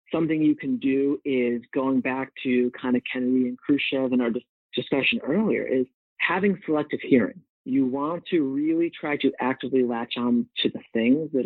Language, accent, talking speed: English, American, 180 wpm